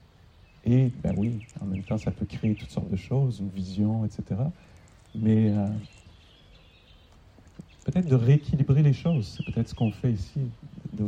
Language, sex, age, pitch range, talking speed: English, male, 40-59, 100-125 Hz, 160 wpm